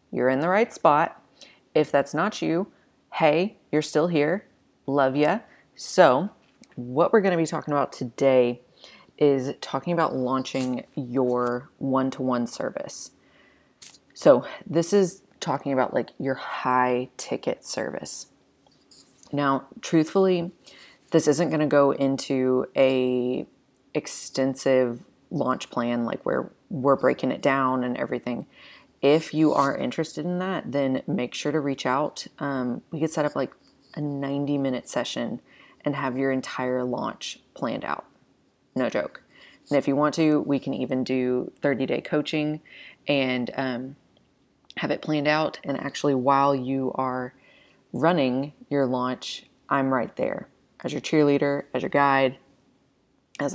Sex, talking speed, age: female, 145 wpm, 30-49